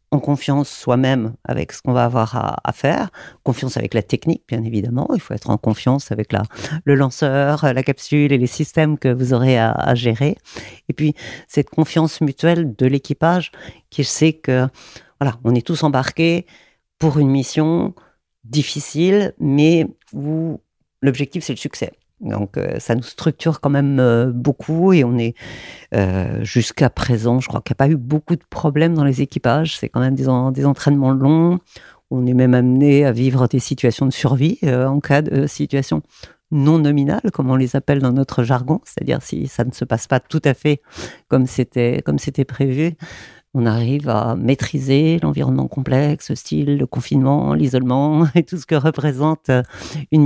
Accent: French